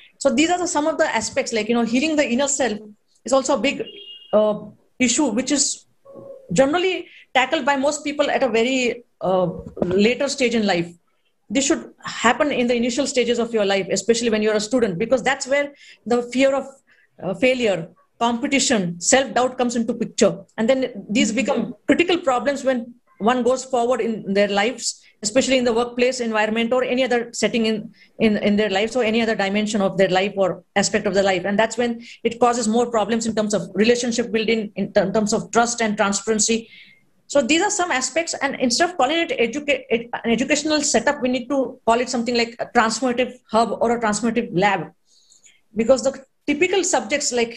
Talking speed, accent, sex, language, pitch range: 195 wpm, Indian, female, English, 220-270 Hz